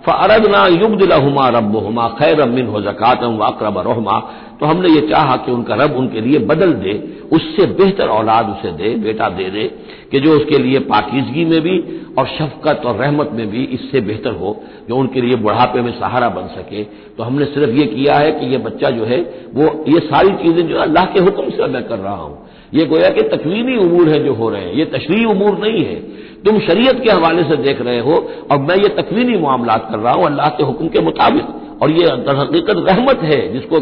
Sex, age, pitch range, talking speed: male, 60-79, 120-180 Hz, 210 wpm